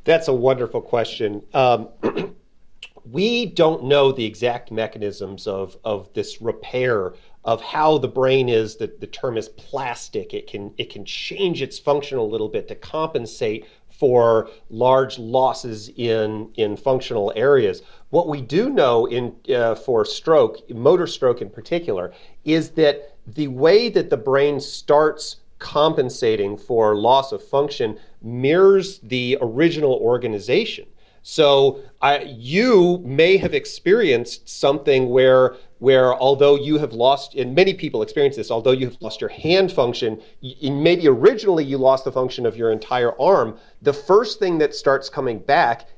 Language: English